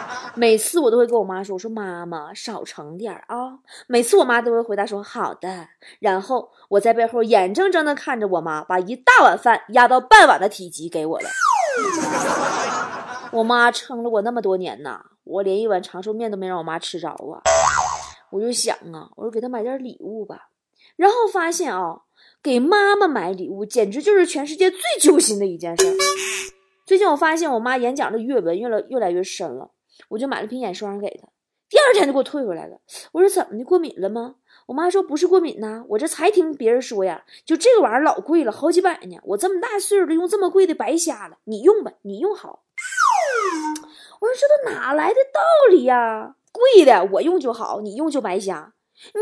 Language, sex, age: Chinese, female, 20-39